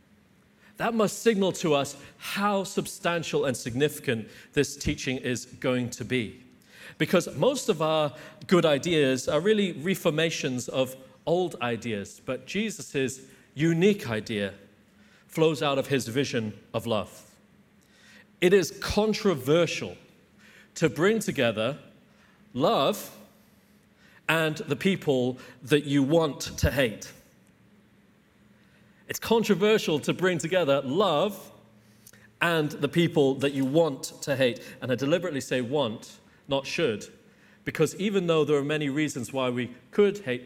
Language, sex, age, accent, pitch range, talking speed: English, male, 40-59, British, 125-170 Hz, 125 wpm